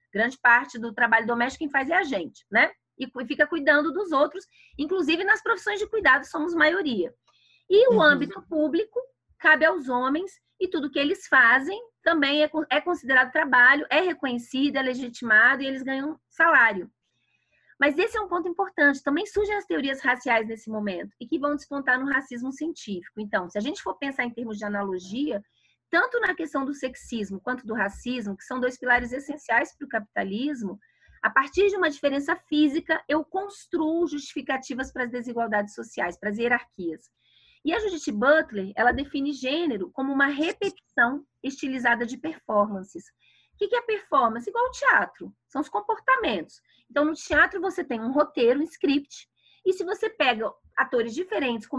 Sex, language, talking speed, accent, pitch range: female, Portuguese, 170 wpm, Brazilian, 245-335 Hz